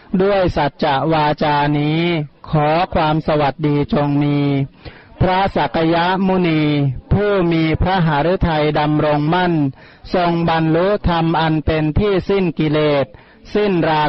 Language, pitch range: Thai, 150-175 Hz